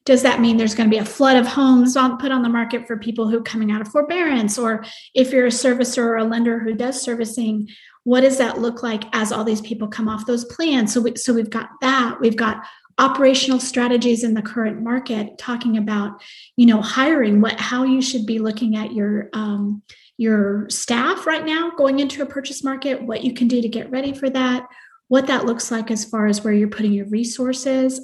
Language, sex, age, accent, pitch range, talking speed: English, female, 30-49, American, 220-260 Hz, 225 wpm